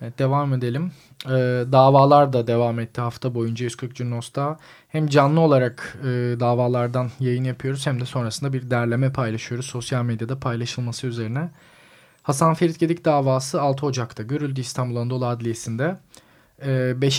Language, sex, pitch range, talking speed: Turkish, male, 120-140 Hz, 140 wpm